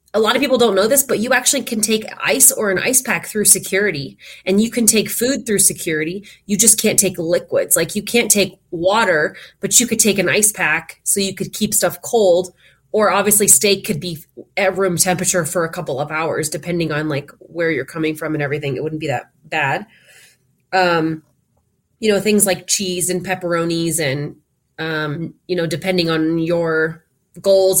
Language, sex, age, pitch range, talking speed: English, female, 20-39, 160-200 Hz, 200 wpm